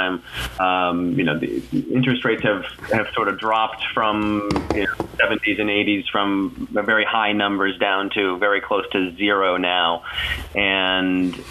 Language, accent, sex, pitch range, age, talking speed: English, American, male, 95-120 Hz, 30-49, 155 wpm